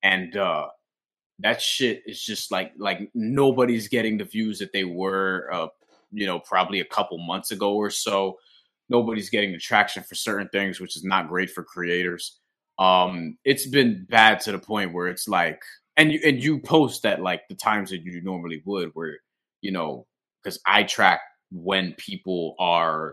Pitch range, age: 95-115 Hz, 20-39